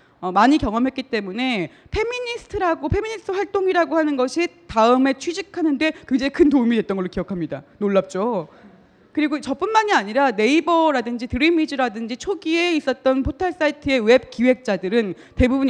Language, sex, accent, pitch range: Korean, female, native, 230-320 Hz